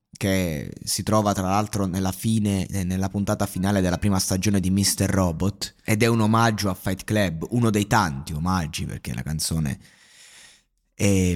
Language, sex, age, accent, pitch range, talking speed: Italian, male, 20-39, native, 95-135 Hz, 165 wpm